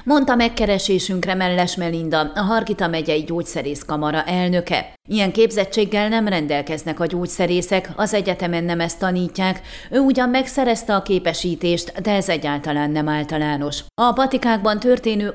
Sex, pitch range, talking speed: female, 170-215 Hz, 130 wpm